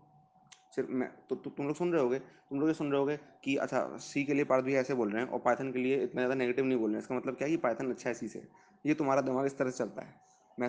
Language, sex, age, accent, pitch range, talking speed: Hindi, male, 20-39, native, 125-150 Hz, 315 wpm